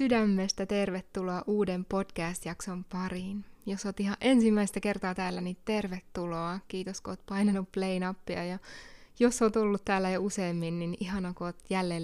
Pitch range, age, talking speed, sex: 175-205 Hz, 20-39, 150 wpm, female